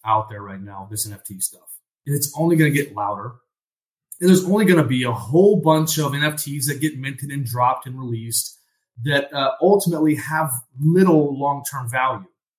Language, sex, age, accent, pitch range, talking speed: English, male, 30-49, American, 120-155 Hz, 185 wpm